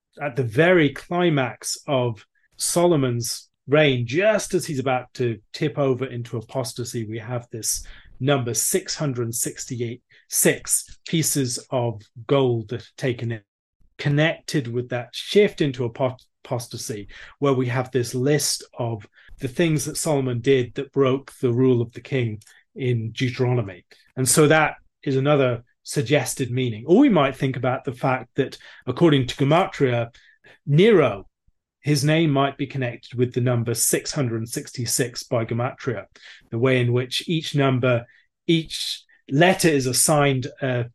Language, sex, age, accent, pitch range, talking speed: English, male, 30-49, British, 120-145 Hz, 140 wpm